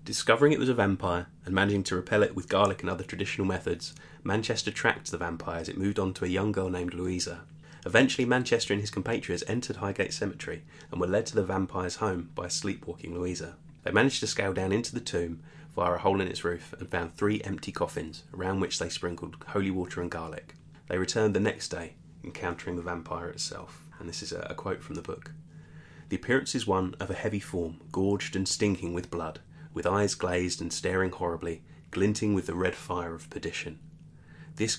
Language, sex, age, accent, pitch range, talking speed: English, male, 20-39, British, 90-105 Hz, 205 wpm